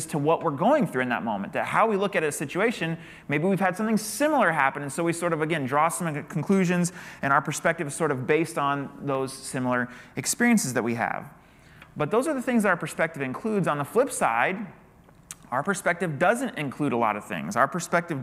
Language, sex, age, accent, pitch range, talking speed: English, male, 30-49, American, 145-190 Hz, 215 wpm